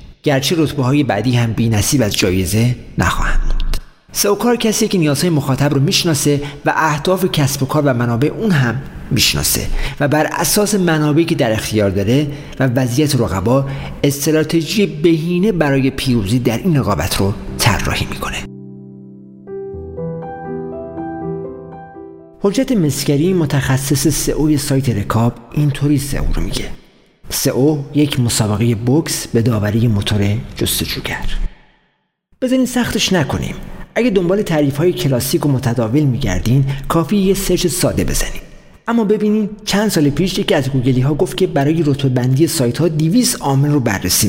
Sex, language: male, Persian